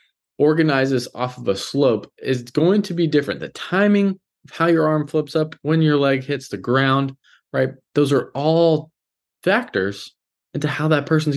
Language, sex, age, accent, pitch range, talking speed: English, male, 20-39, American, 120-155 Hz, 180 wpm